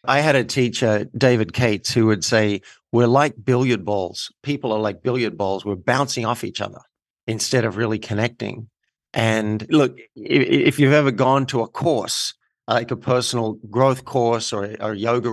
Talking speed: 170 wpm